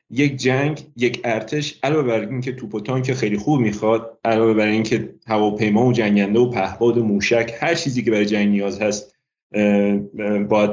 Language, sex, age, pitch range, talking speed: Persian, male, 30-49, 105-130 Hz, 180 wpm